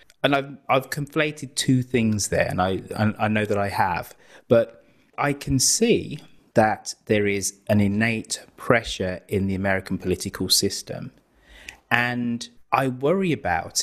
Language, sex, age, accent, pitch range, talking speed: English, male, 30-49, British, 95-120 Hz, 145 wpm